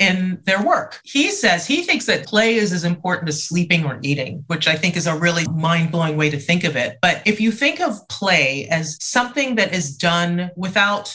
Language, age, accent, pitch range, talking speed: English, 30-49, American, 155-195 Hz, 220 wpm